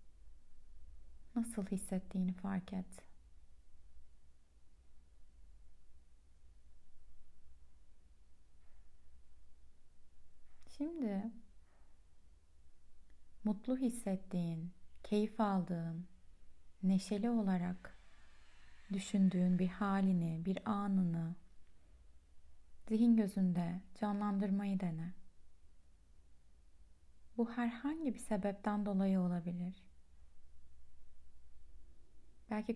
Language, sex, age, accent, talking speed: Turkish, female, 30-49, native, 50 wpm